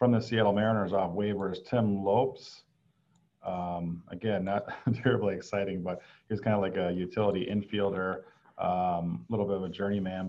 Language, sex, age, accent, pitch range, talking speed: English, male, 40-59, American, 90-110 Hz, 155 wpm